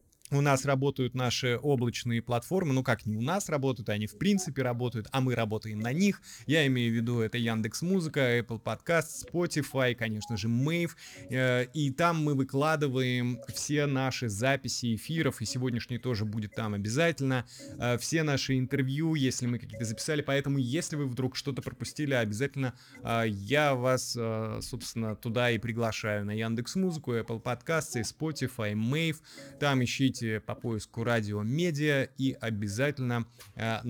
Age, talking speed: 20-39, 150 wpm